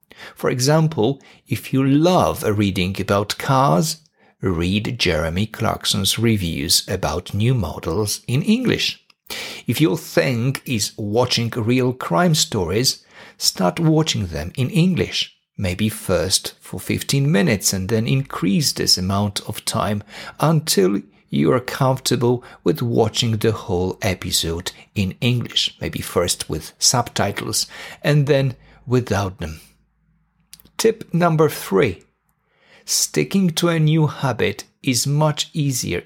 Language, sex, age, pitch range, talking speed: English, male, 50-69, 105-155 Hz, 120 wpm